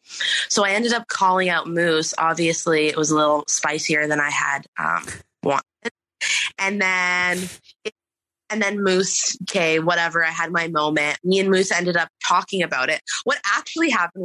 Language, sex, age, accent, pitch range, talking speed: English, female, 20-39, American, 160-205 Hz, 165 wpm